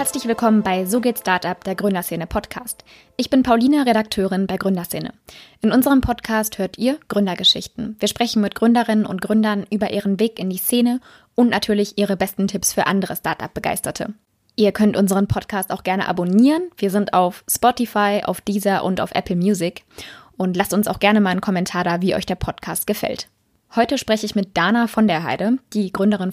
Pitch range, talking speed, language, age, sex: 190-225 Hz, 185 wpm, German, 20-39, female